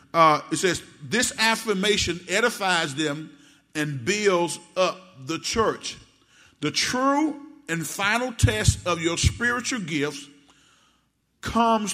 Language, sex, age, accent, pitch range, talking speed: English, male, 50-69, American, 170-230 Hz, 110 wpm